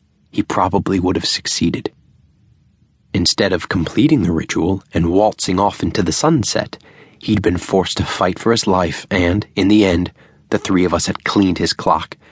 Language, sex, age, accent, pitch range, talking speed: English, male, 30-49, American, 85-105 Hz, 175 wpm